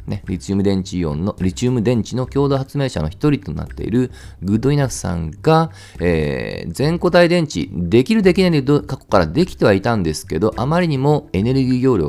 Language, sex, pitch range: Japanese, male, 95-150 Hz